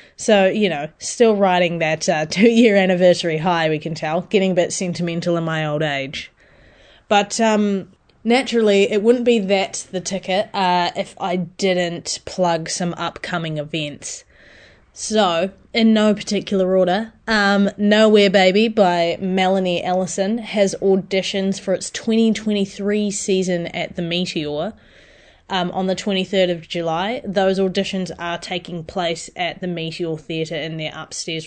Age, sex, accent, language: 20-39, female, Australian, English